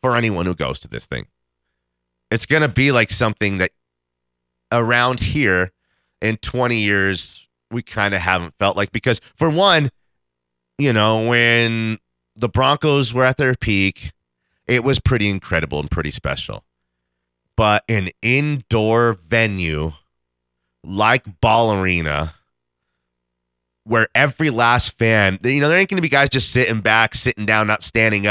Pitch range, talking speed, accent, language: 85-120 Hz, 150 wpm, American, English